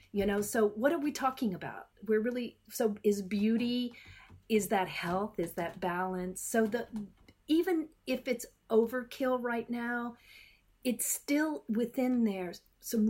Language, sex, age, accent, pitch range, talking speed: English, female, 40-59, American, 205-255 Hz, 145 wpm